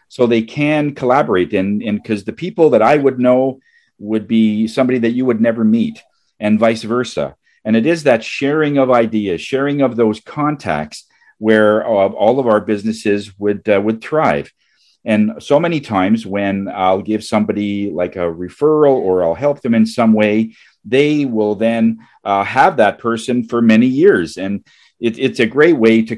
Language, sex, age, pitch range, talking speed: English, male, 50-69, 100-130 Hz, 180 wpm